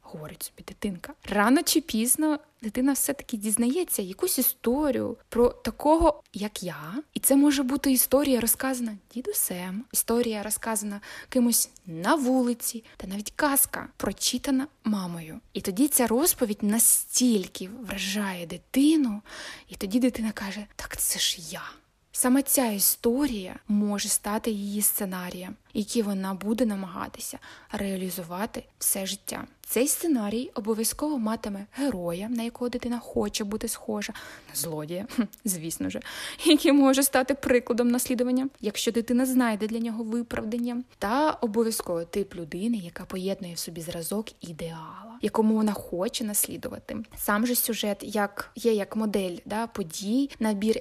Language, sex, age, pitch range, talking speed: Ukrainian, female, 20-39, 205-255 Hz, 130 wpm